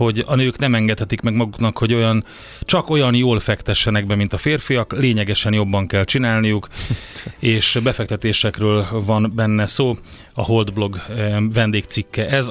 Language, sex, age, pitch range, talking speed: Hungarian, male, 30-49, 105-125 Hz, 145 wpm